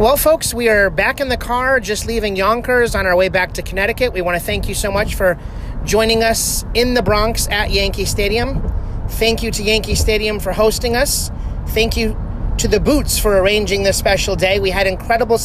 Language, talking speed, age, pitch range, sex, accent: English, 205 wpm, 30-49, 185-225 Hz, male, American